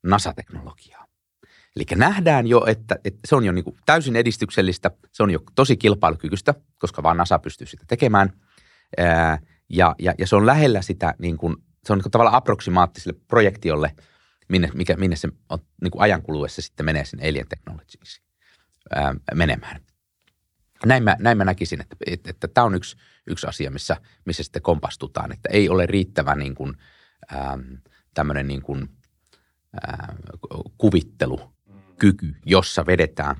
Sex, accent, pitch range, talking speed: male, native, 75-100 Hz, 135 wpm